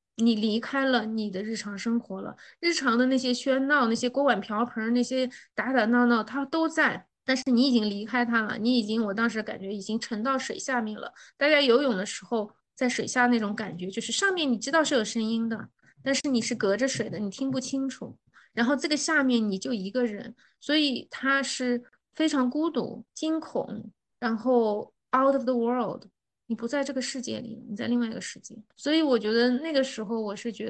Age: 20-39